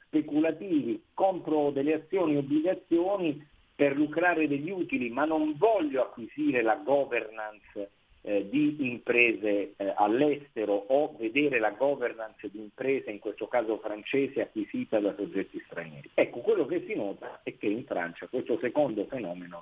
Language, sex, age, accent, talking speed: Italian, male, 50-69, native, 145 wpm